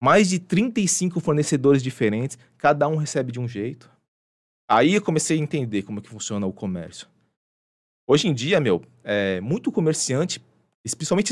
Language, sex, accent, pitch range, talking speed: Portuguese, male, Brazilian, 115-170 Hz, 160 wpm